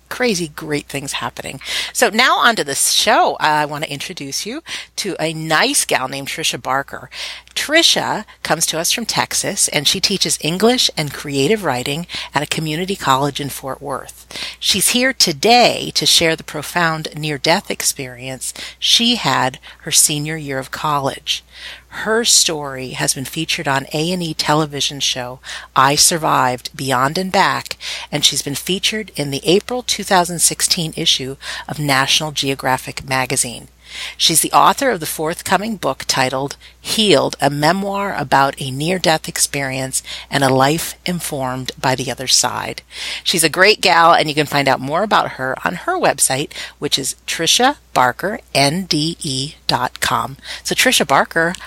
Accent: American